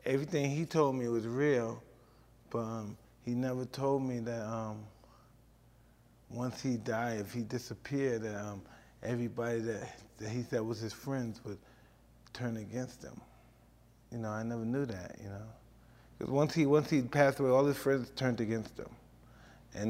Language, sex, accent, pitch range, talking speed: English, male, American, 115-140 Hz, 170 wpm